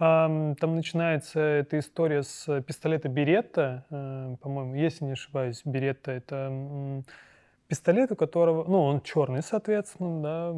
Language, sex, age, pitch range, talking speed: Russian, male, 20-39, 140-165 Hz, 125 wpm